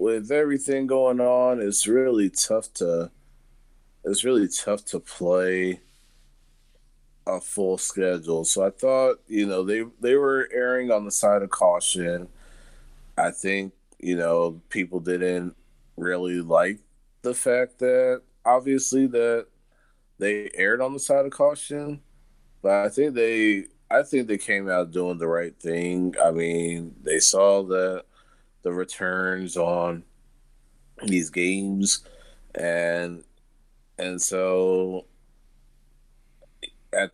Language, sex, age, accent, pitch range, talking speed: English, male, 20-39, American, 85-110 Hz, 125 wpm